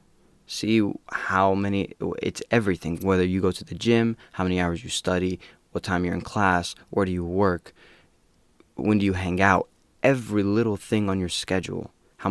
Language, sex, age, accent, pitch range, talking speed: English, male, 20-39, American, 90-105 Hz, 180 wpm